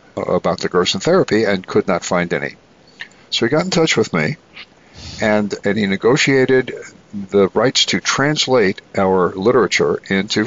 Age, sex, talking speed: 60-79, male, 155 wpm